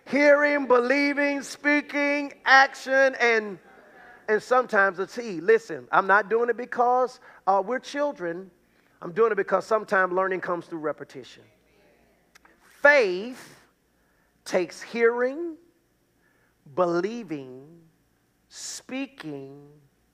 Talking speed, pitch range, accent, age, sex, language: 95 wpm, 175-270 Hz, American, 40-59, male, English